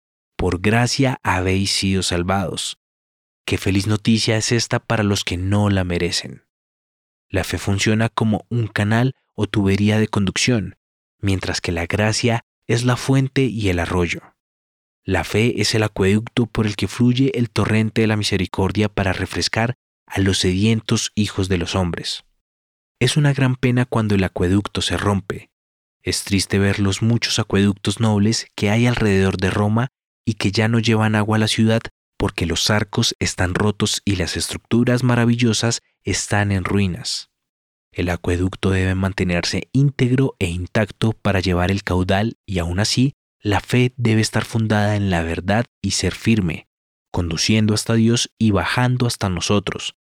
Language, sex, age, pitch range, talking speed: English, male, 30-49, 95-115 Hz, 160 wpm